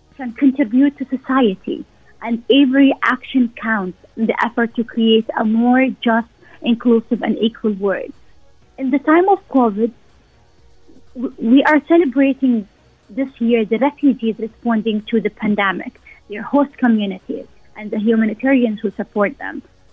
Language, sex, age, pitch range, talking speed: English, female, 30-49, 215-260 Hz, 135 wpm